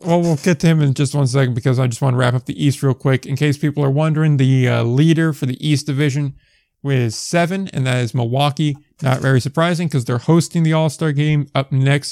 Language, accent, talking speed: English, American, 245 wpm